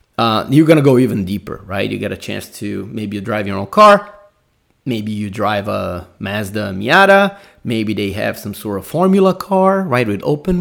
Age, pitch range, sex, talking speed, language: 30-49, 95-125 Hz, male, 205 wpm, English